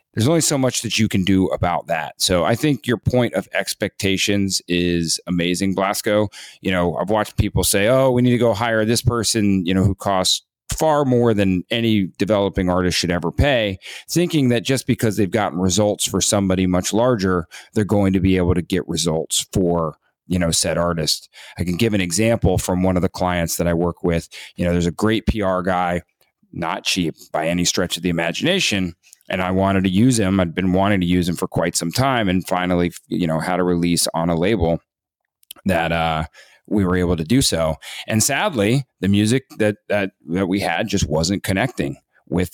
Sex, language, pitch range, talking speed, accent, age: male, English, 85-105 Hz, 205 wpm, American, 30-49